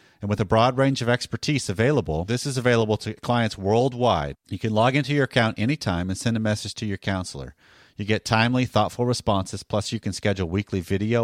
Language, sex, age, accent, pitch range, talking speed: English, male, 40-59, American, 100-125 Hz, 210 wpm